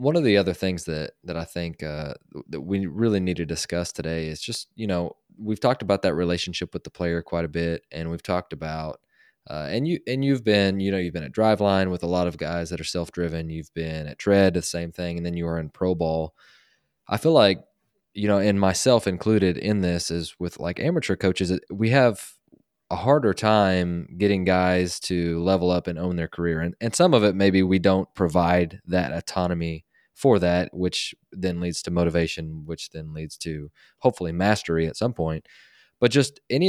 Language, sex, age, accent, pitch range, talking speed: English, male, 20-39, American, 85-95 Hz, 210 wpm